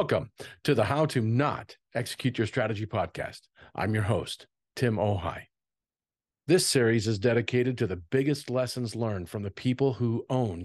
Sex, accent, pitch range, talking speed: male, American, 105-130 Hz, 165 wpm